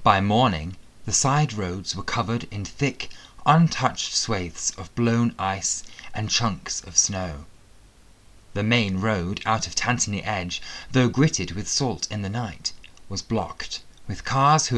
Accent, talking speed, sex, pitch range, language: British, 150 wpm, male, 90-125 Hz, English